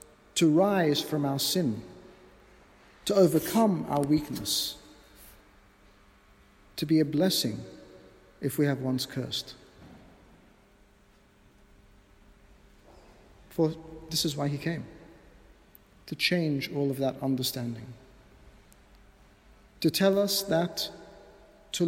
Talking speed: 95 wpm